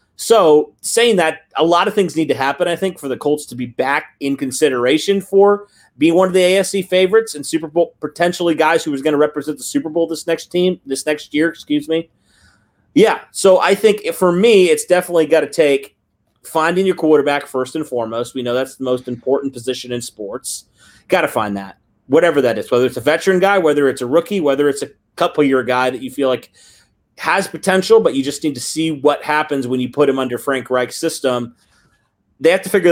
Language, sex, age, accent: English, male, 30-49, American